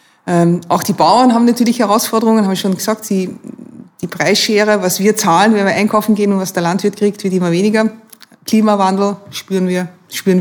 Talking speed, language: 185 wpm, German